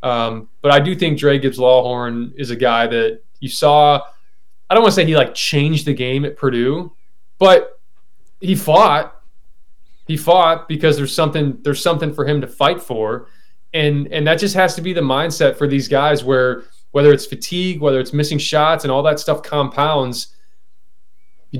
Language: English